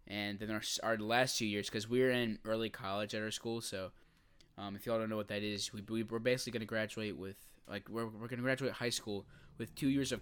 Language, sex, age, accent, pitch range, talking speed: English, male, 10-29, American, 100-125 Hz, 260 wpm